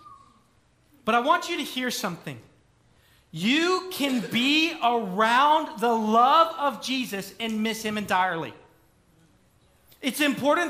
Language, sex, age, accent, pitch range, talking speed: English, male, 40-59, American, 225-290 Hz, 120 wpm